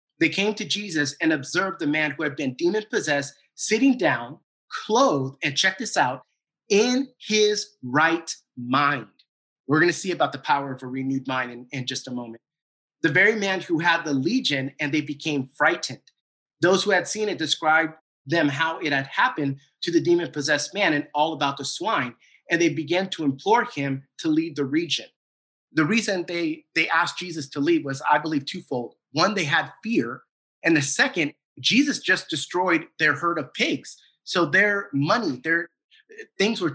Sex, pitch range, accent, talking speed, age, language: male, 145-185 Hz, American, 185 wpm, 30-49, English